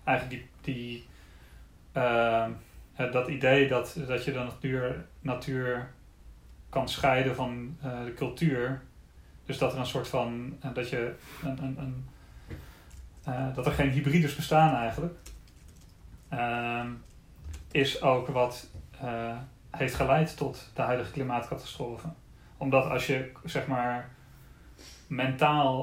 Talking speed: 125 wpm